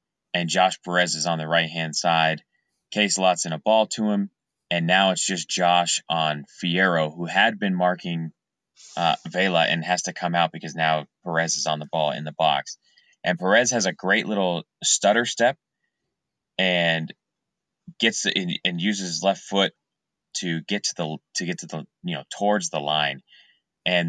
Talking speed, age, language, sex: 185 wpm, 30-49, English, male